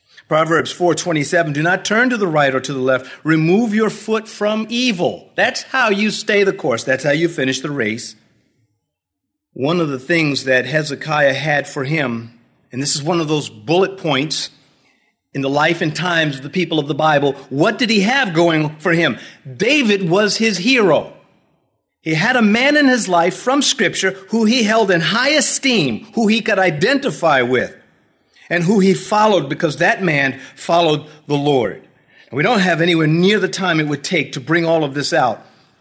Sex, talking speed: male, 195 wpm